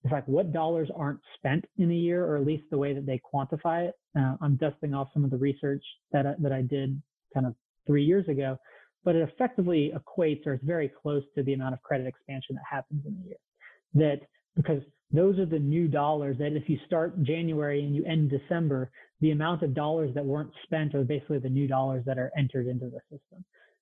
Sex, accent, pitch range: male, American, 140-165 Hz